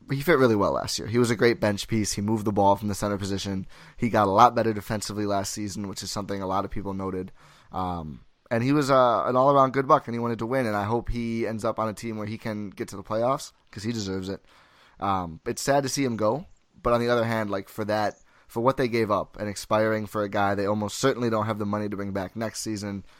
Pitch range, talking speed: 100-120 Hz, 275 wpm